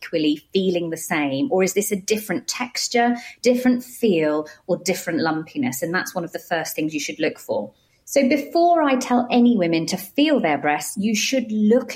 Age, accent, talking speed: 40-59, British, 190 wpm